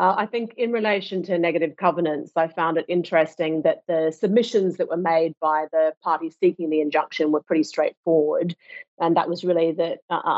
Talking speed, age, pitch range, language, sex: 190 wpm, 30-49, 160-185 Hz, English, female